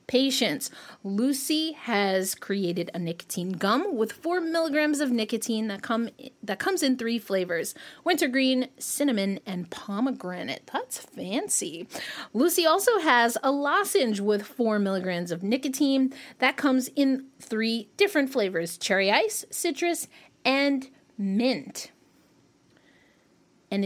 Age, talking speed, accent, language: 30-49, 115 wpm, American, English